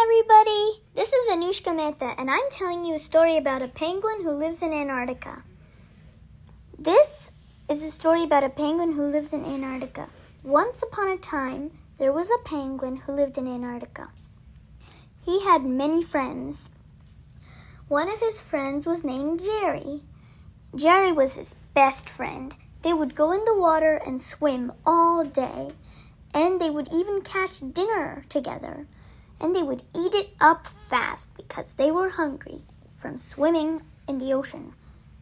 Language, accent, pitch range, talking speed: Hindi, American, 290-365 Hz, 155 wpm